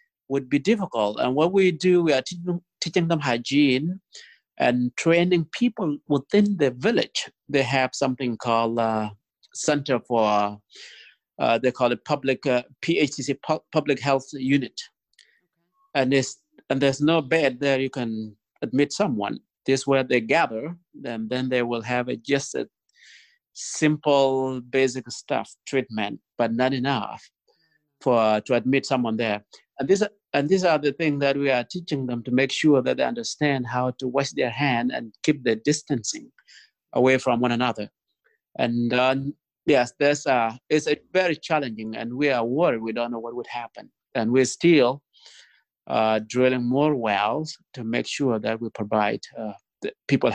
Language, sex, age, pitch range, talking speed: English, male, 50-69, 120-150 Hz, 160 wpm